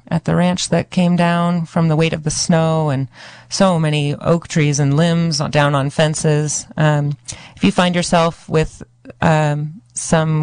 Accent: American